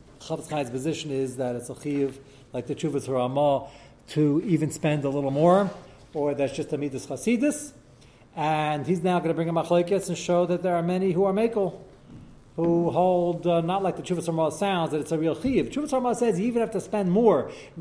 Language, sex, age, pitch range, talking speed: English, male, 40-59, 150-190 Hz, 220 wpm